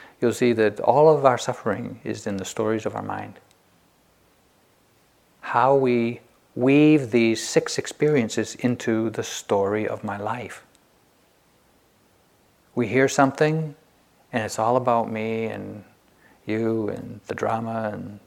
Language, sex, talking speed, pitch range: English, male, 130 wpm, 110-125 Hz